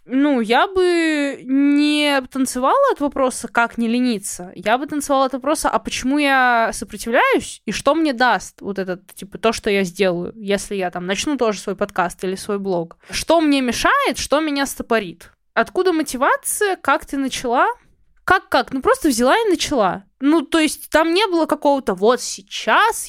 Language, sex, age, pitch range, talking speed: Russian, female, 20-39, 220-300 Hz, 170 wpm